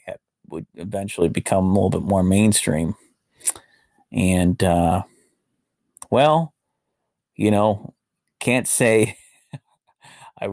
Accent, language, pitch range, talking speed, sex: American, English, 95-110 Hz, 90 wpm, male